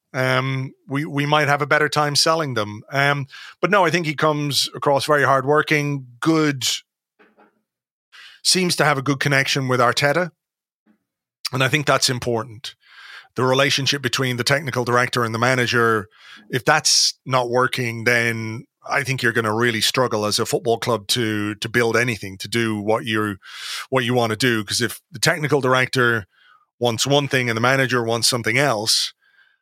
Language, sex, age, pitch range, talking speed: English, male, 30-49, 115-140 Hz, 175 wpm